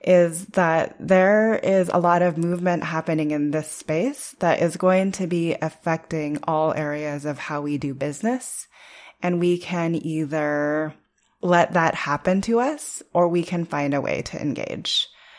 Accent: American